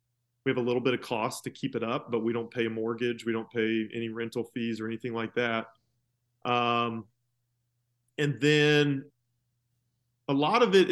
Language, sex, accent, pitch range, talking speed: English, male, American, 120-135 Hz, 185 wpm